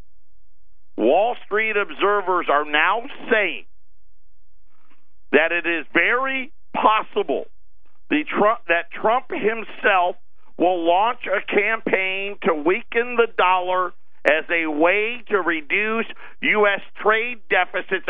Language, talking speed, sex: English, 100 wpm, male